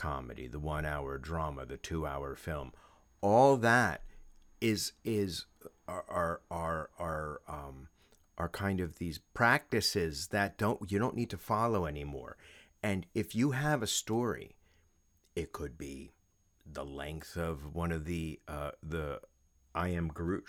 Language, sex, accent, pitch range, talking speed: English, male, American, 80-105 Hz, 145 wpm